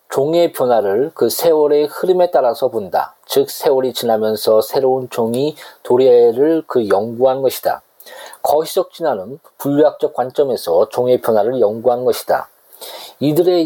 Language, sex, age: Korean, male, 40-59